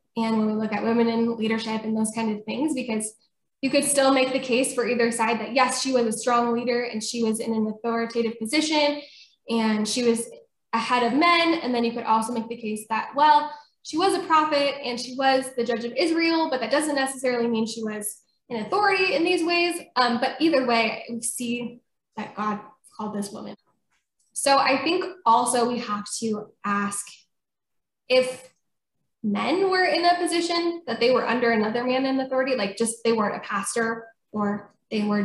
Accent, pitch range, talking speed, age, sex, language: American, 215-255 Hz, 200 wpm, 10-29, female, English